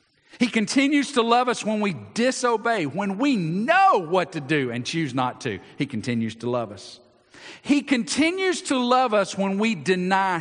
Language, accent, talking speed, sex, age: English, American, 180 wpm, male, 50-69